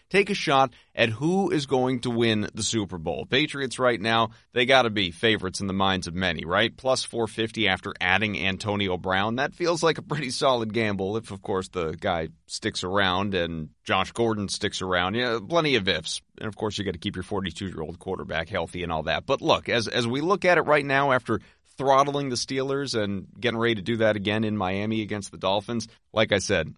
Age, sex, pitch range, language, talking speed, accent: 30-49, male, 95-125 Hz, English, 230 wpm, American